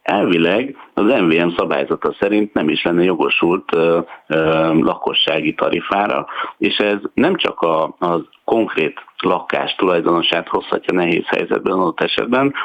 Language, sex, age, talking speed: Hungarian, male, 60-79, 130 wpm